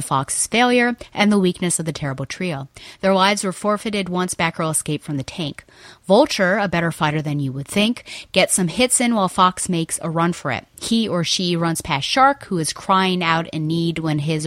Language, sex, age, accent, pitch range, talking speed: English, female, 30-49, American, 160-195 Hz, 215 wpm